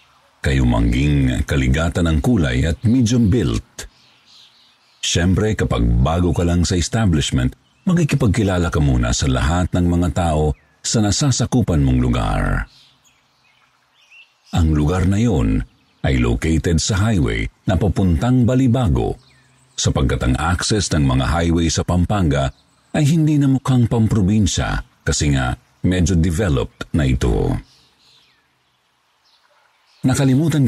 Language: Filipino